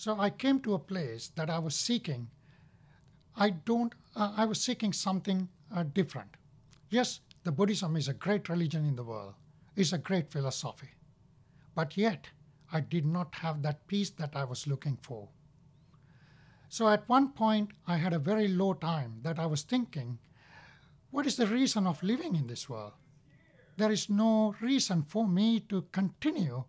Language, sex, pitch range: English, male, 145-195 Hz